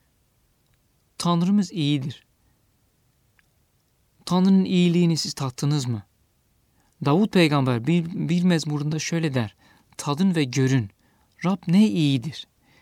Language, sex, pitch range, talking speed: Turkish, male, 120-175 Hz, 90 wpm